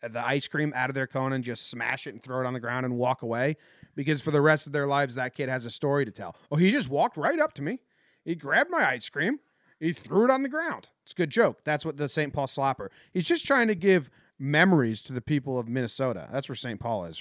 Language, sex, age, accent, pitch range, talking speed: English, male, 30-49, American, 125-170 Hz, 275 wpm